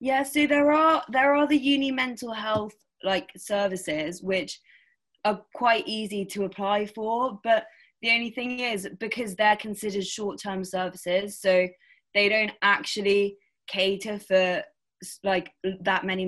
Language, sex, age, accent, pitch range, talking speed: English, female, 20-39, British, 170-210 Hz, 140 wpm